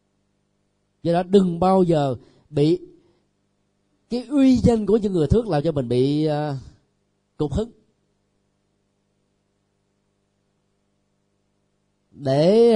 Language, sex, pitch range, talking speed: Vietnamese, male, 100-165 Hz, 100 wpm